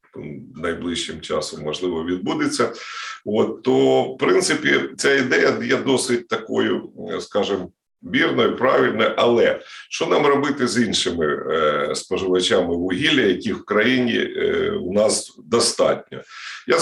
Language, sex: Ukrainian, male